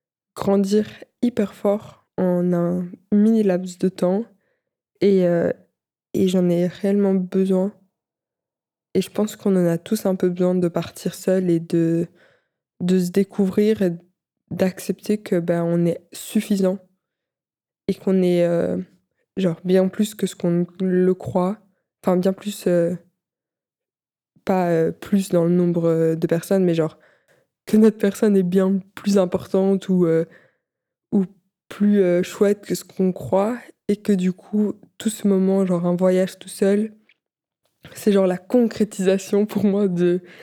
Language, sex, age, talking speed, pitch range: French, female, 20-39, 150 wpm, 180-205 Hz